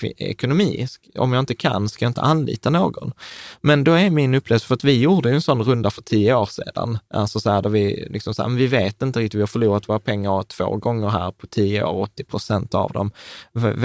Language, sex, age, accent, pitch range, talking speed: Swedish, male, 20-39, native, 105-135 Hz, 240 wpm